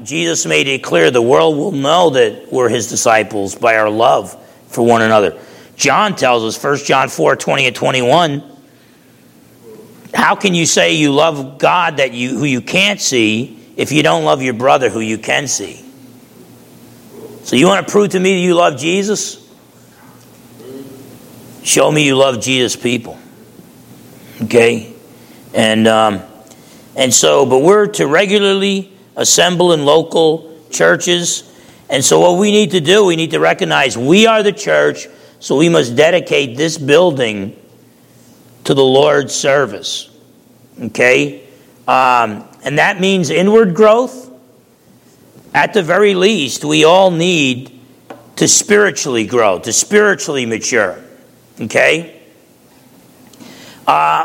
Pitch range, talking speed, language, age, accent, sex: 125-195 Hz, 140 wpm, English, 40-59, American, male